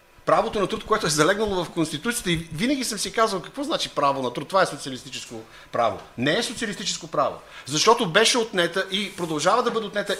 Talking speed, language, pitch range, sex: 200 wpm, Bulgarian, 150-200 Hz, male